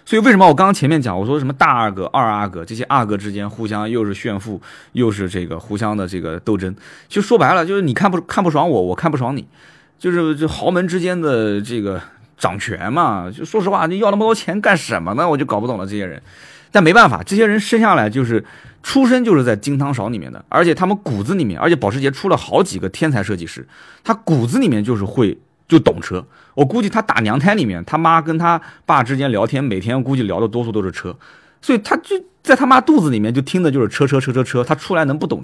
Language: Chinese